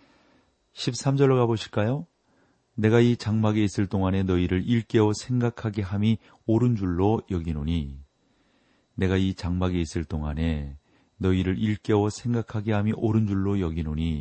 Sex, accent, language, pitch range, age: male, native, Korean, 85-110 Hz, 40-59